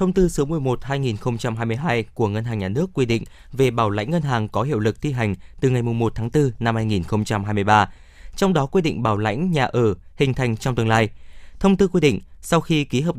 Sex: male